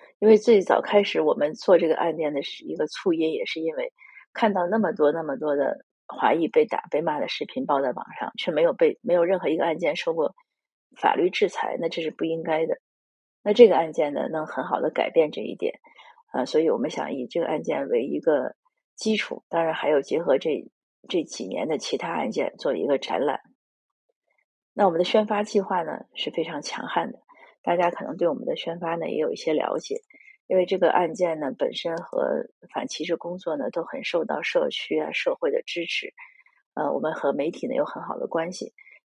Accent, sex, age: native, female, 30-49